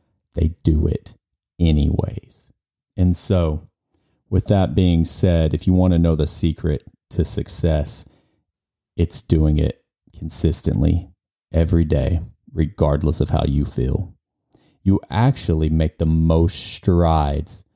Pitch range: 80-95 Hz